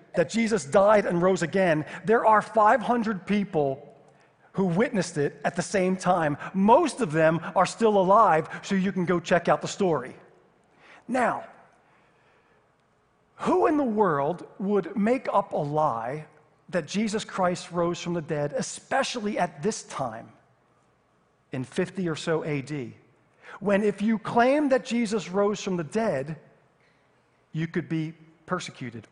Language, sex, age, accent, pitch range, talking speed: English, male, 40-59, American, 150-200 Hz, 145 wpm